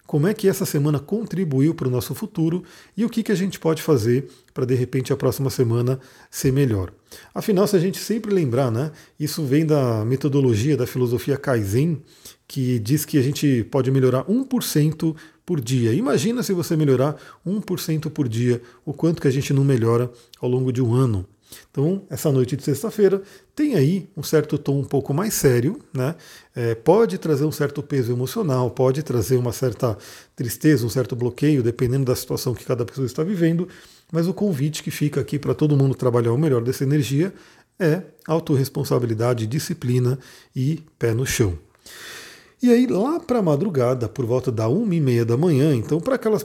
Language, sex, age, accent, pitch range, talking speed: Portuguese, male, 40-59, Brazilian, 125-160 Hz, 185 wpm